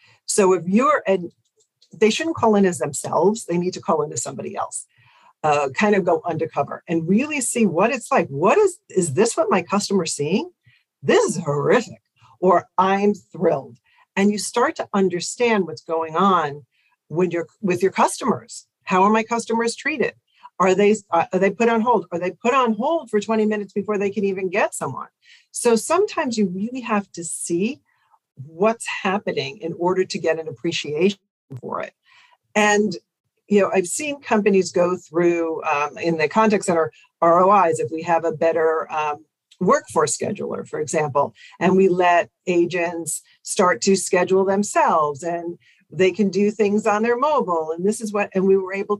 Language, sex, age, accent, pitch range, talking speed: English, female, 50-69, American, 170-220 Hz, 180 wpm